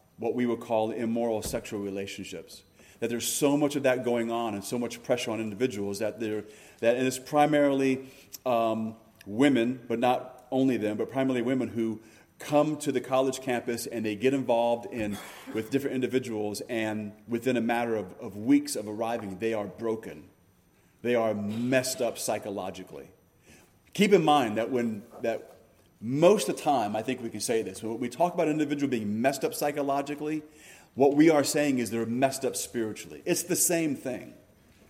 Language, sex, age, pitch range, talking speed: English, male, 30-49, 110-140 Hz, 175 wpm